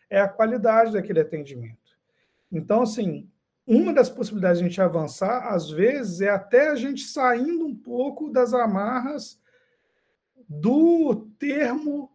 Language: Portuguese